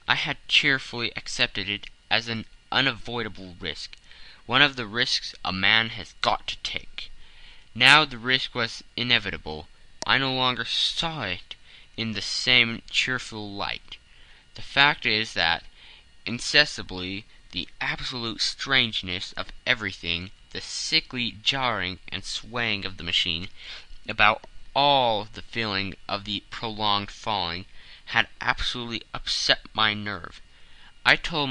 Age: 20-39